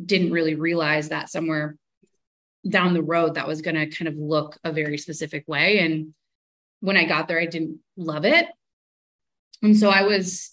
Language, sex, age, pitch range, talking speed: English, female, 20-39, 155-175 Hz, 180 wpm